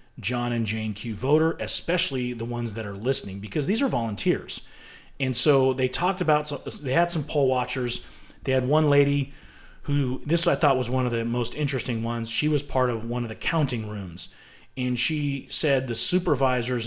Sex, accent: male, American